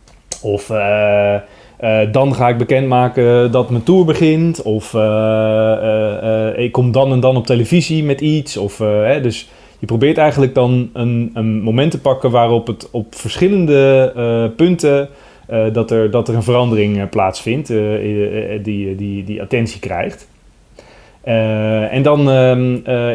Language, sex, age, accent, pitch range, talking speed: Dutch, male, 30-49, Dutch, 105-130 Hz, 150 wpm